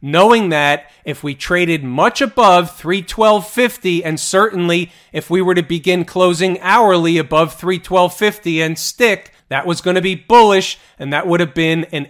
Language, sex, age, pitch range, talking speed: English, male, 40-59, 150-190 Hz, 165 wpm